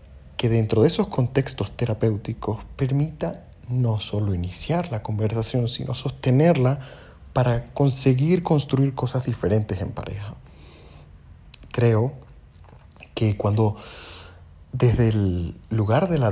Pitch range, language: 95-125 Hz, Spanish